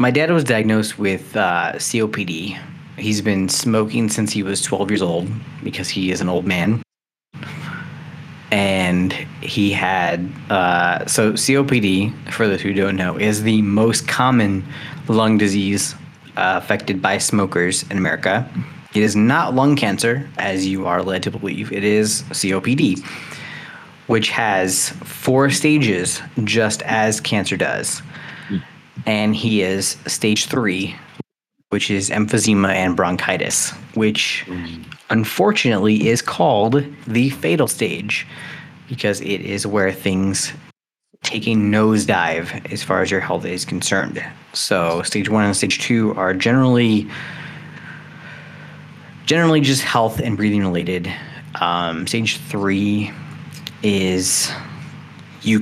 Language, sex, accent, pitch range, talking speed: English, male, American, 100-140 Hz, 125 wpm